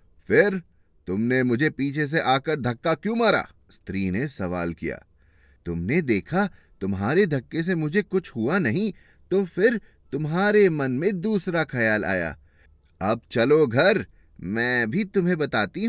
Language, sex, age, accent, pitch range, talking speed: Hindi, male, 30-49, native, 85-145 Hz, 140 wpm